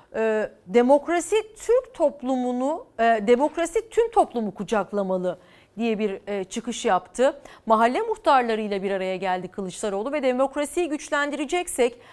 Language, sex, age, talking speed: Turkish, female, 40-59, 100 wpm